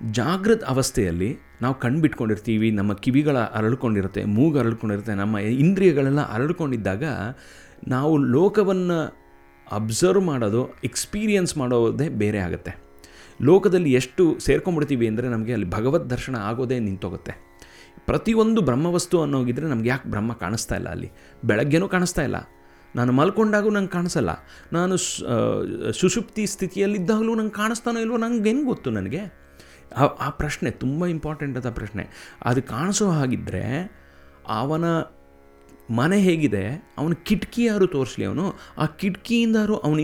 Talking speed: 115 wpm